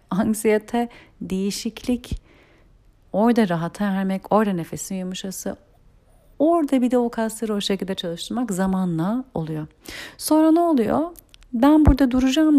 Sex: female